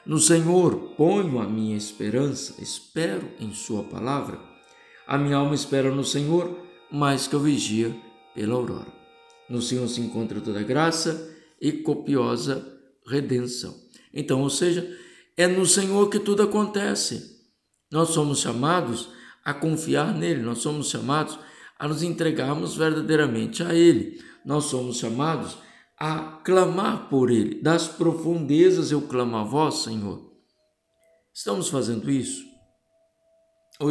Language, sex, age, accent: Portuguese, male, 60-79, Brazilian